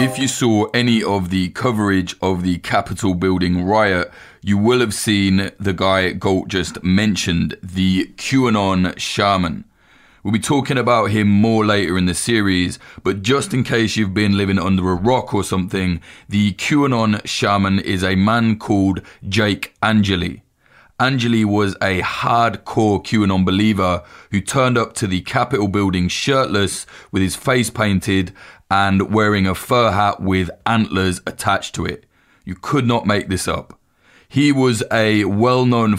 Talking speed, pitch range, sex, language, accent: 155 wpm, 95-115 Hz, male, English, British